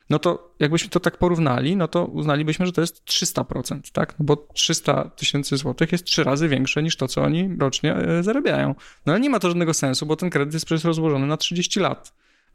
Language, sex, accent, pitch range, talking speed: Polish, male, native, 135-170 Hz, 220 wpm